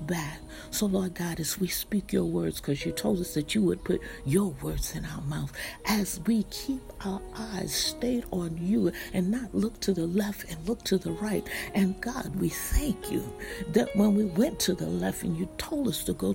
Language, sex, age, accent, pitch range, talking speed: English, female, 60-79, American, 175-220 Hz, 215 wpm